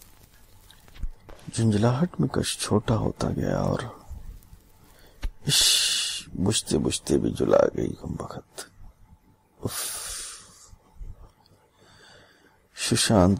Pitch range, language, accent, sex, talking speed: 90-100 Hz, Hindi, native, male, 65 wpm